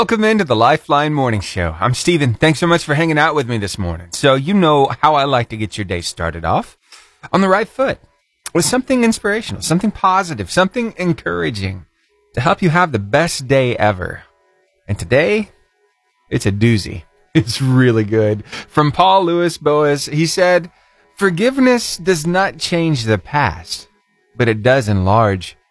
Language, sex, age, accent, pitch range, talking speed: English, male, 30-49, American, 100-165 Hz, 170 wpm